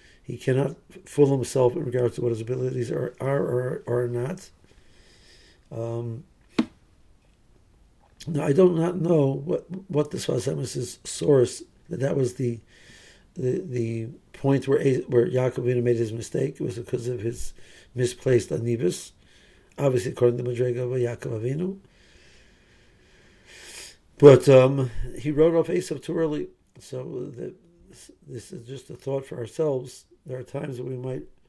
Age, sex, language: 50-69, male, English